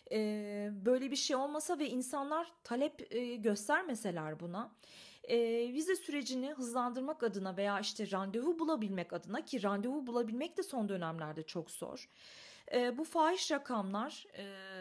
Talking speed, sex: 120 wpm, female